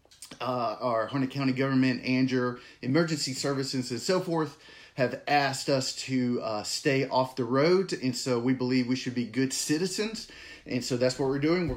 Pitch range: 120-140 Hz